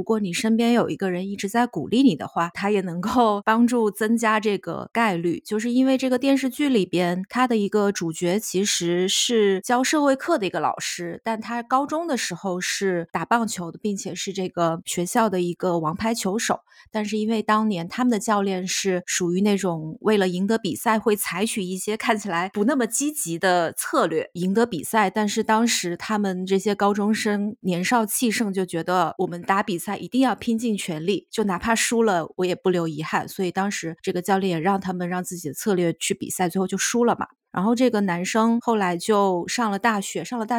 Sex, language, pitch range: female, Chinese, 180-225 Hz